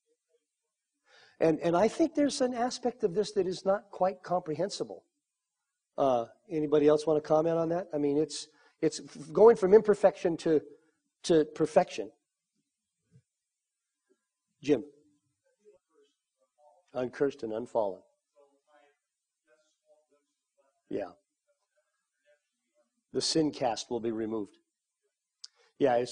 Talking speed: 100 wpm